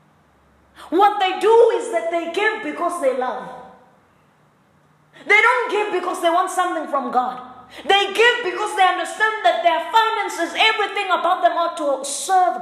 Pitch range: 250-365 Hz